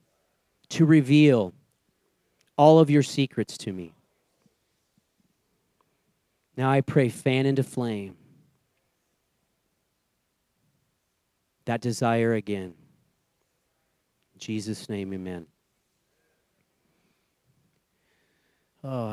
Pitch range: 120-145 Hz